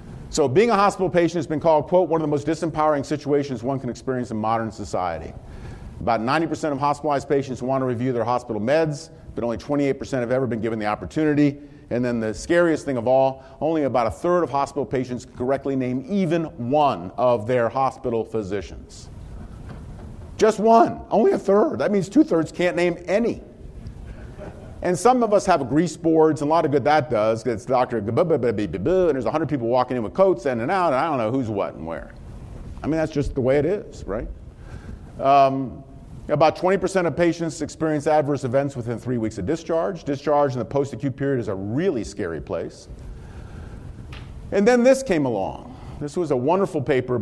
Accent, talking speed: American, 195 wpm